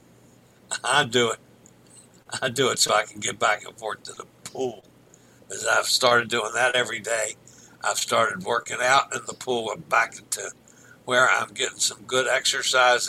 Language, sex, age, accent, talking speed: English, male, 60-79, American, 180 wpm